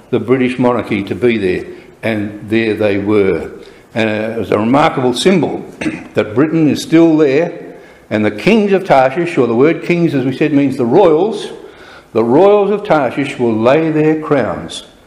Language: English